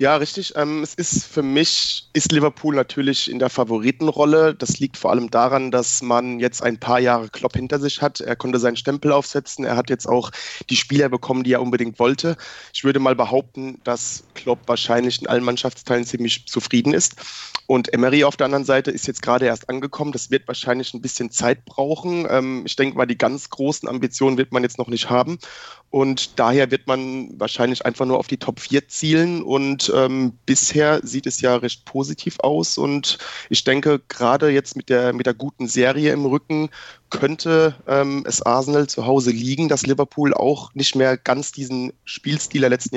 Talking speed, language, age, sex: 195 wpm, German, 30-49, male